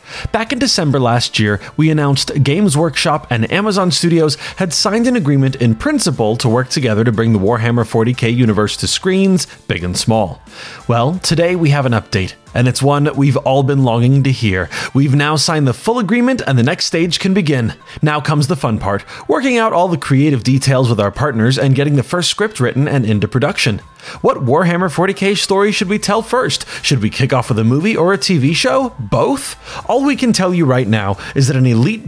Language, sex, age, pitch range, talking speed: English, male, 30-49, 120-175 Hz, 210 wpm